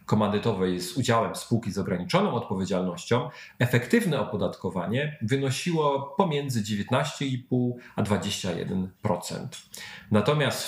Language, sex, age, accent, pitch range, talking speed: Polish, male, 40-59, native, 100-135 Hz, 80 wpm